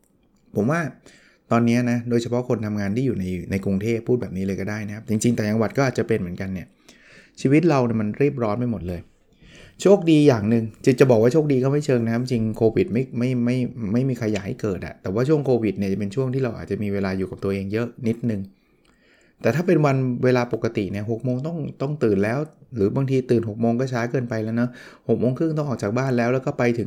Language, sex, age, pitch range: Thai, male, 20-39, 105-130 Hz